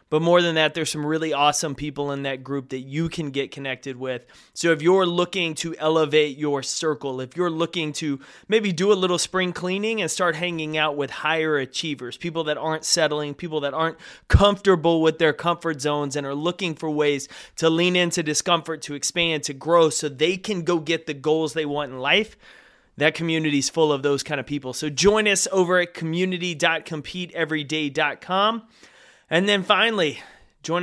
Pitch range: 150-175 Hz